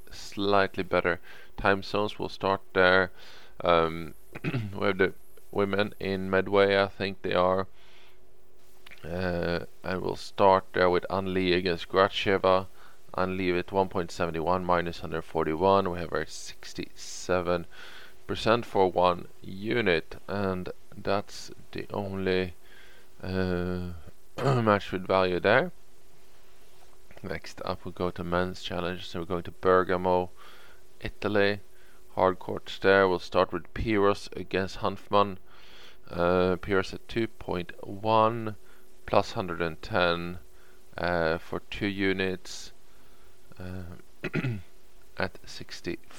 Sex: male